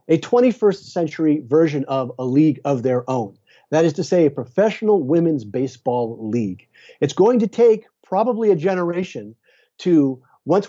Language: English